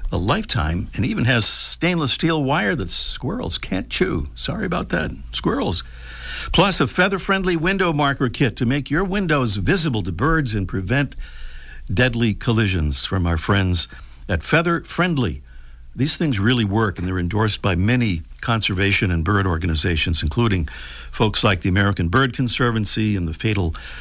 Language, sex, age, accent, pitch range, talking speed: English, male, 60-79, American, 80-135 Hz, 155 wpm